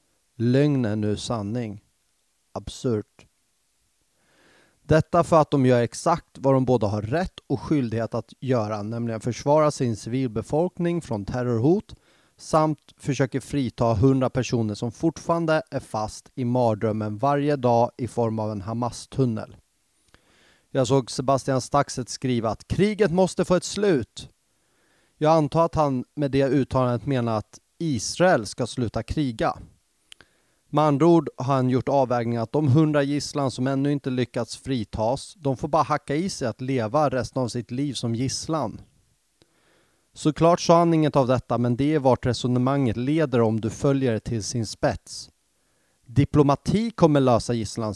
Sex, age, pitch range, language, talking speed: male, 30-49, 115-150 Hz, English, 150 wpm